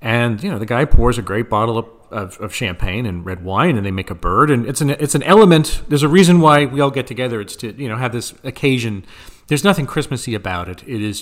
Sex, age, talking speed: male, 40-59, 260 wpm